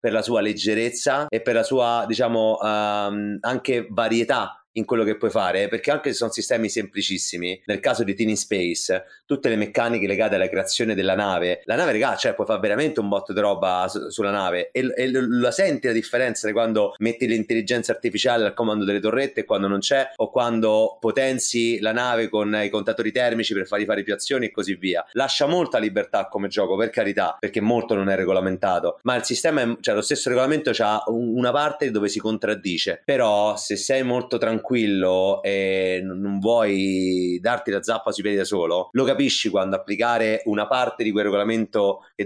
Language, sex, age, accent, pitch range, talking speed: Italian, male, 30-49, native, 100-120 Hz, 195 wpm